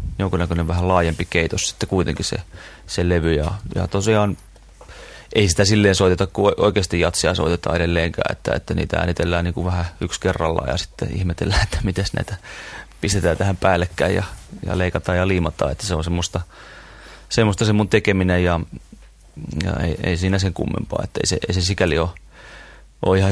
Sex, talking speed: male, 170 wpm